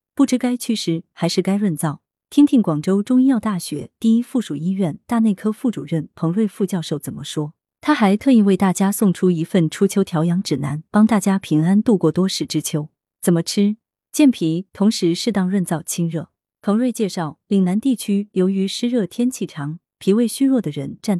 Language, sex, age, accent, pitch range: Chinese, female, 30-49, native, 165-230 Hz